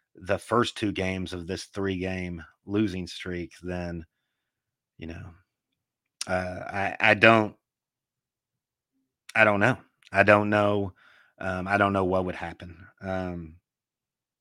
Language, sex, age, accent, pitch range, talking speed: English, male, 30-49, American, 95-110 Hz, 130 wpm